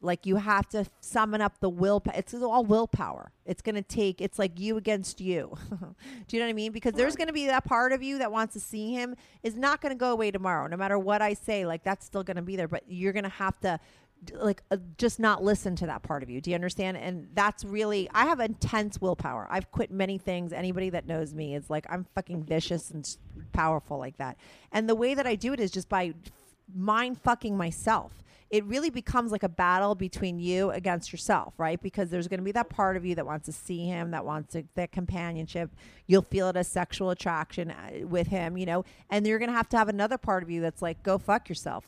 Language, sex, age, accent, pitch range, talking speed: English, female, 30-49, American, 175-215 Hz, 240 wpm